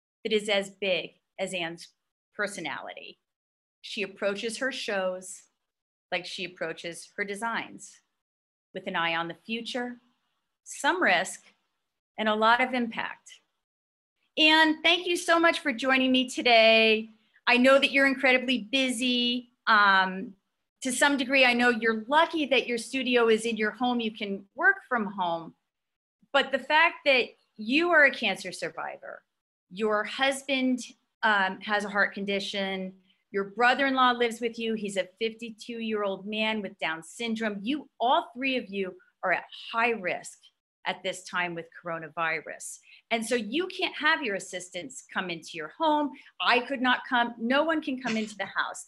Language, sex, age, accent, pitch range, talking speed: English, female, 40-59, American, 195-265 Hz, 155 wpm